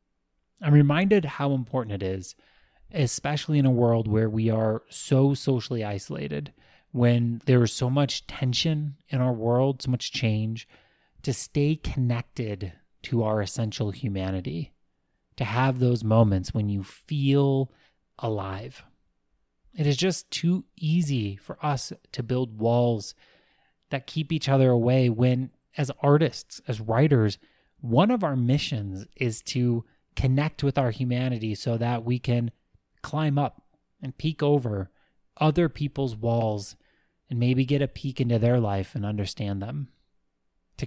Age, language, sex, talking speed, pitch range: 30-49, English, male, 140 wpm, 110-140 Hz